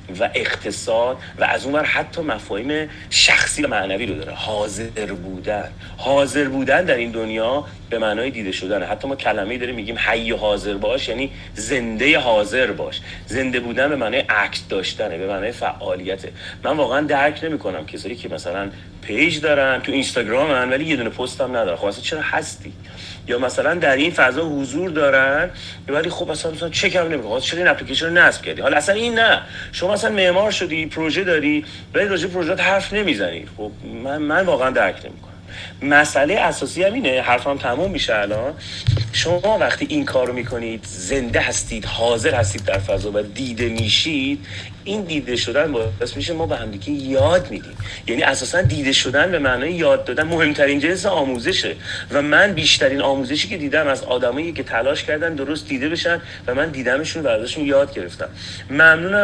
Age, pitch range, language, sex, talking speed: 30-49, 105-155 Hz, Persian, male, 170 wpm